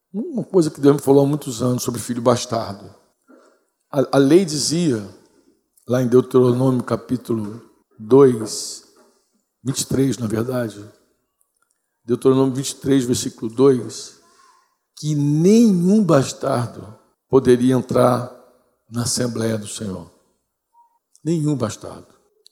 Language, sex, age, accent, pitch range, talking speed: Portuguese, male, 60-79, Brazilian, 125-190 Hz, 105 wpm